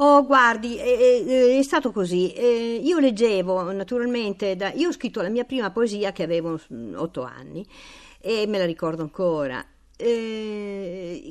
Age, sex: 50-69, female